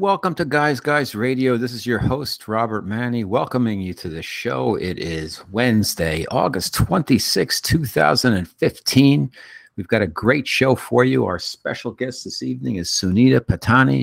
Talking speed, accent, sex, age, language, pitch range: 160 wpm, American, male, 60-79, English, 85-110 Hz